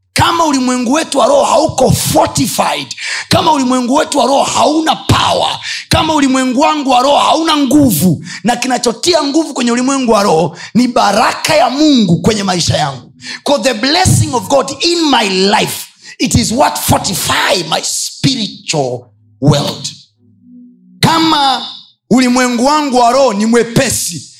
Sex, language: male, Swahili